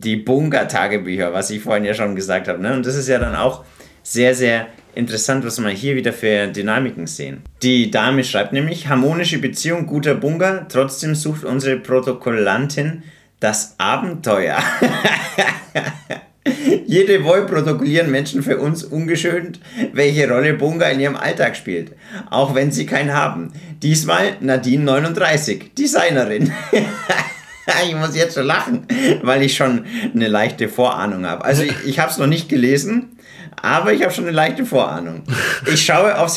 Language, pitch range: German, 125-165 Hz